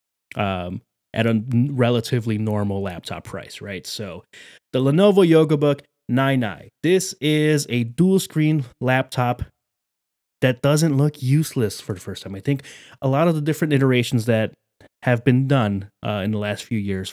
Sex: male